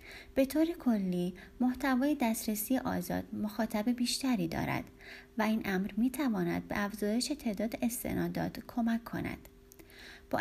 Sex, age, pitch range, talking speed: female, 30-49, 160-250 Hz, 120 wpm